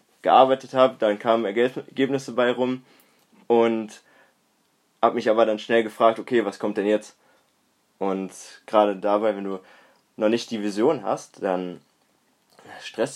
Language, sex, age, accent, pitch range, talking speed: German, male, 20-39, German, 95-110 Hz, 140 wpm